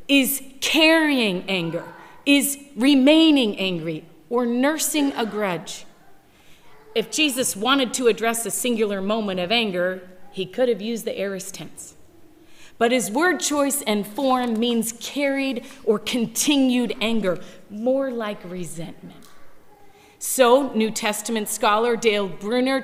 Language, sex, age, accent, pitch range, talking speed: English, female, 40-59, American, 210-270 Hz, 125 wpm